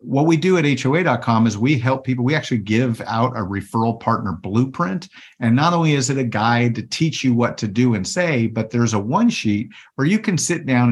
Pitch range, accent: 115-145 Hz, American